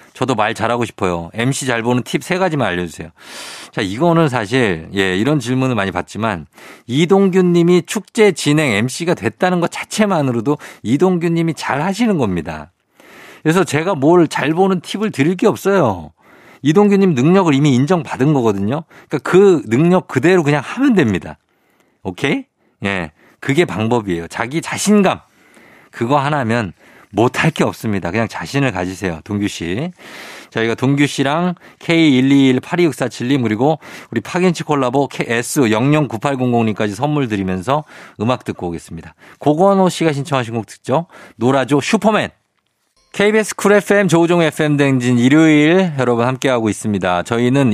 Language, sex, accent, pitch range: Korean, male, native, 115-175 Hz